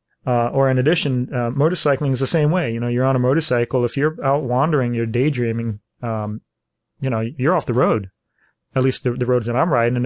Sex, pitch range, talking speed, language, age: male, 120-140 Hz, 225 wpm, English, 30-49